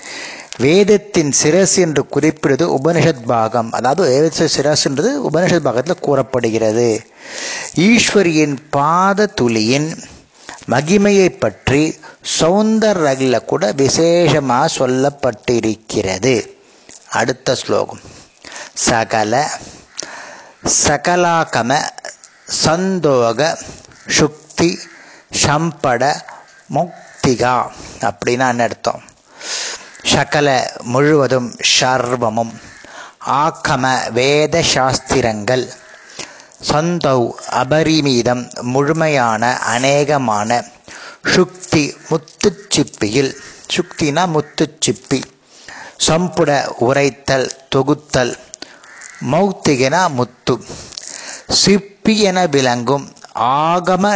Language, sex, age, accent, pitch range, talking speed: Tamil, male, 60-79, native, 125-165 Hz, 60 wpm